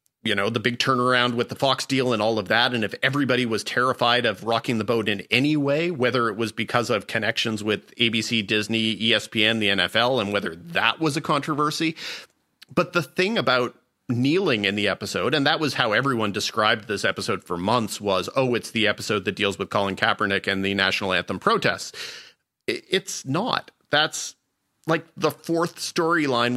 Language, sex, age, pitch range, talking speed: English, male, 40-59, 115-145 Hz, 185 wpm